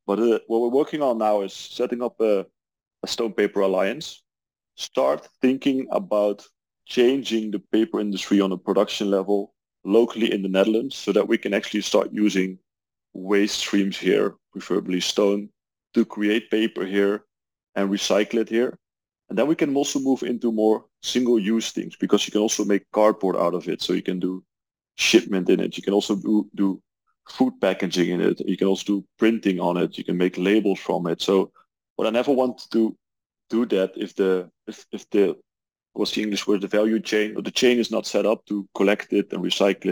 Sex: male